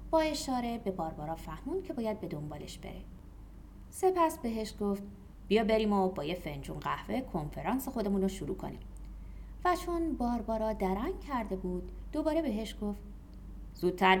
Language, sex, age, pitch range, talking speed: Persian, female, 30-49, 165-245 Hz, 150 wpm